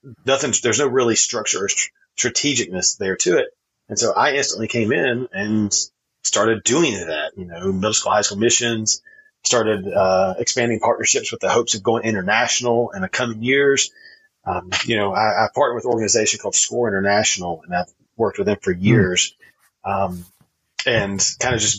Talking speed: 180 wpm